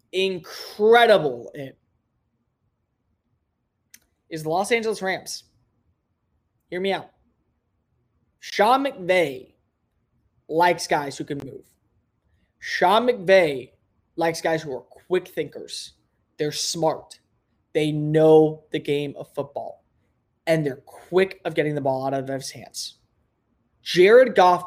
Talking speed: 110 wpm